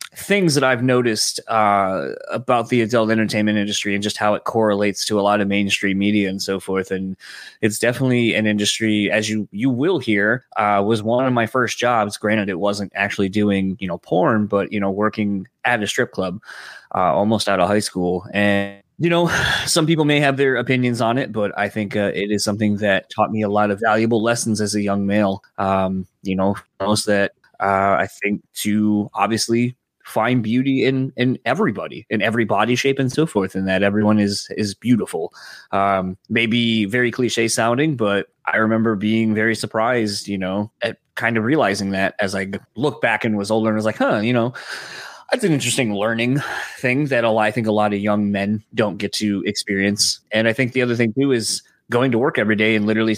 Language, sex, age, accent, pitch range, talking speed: English, male, 20-39, American, 100-115 Hz, 210 wpm